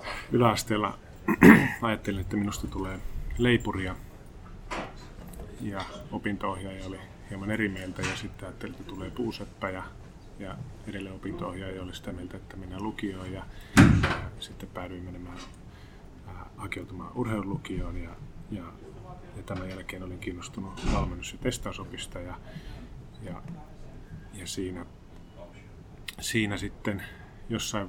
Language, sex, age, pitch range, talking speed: Finnish, male, 30-49, 90-105 Hz, 115 wpm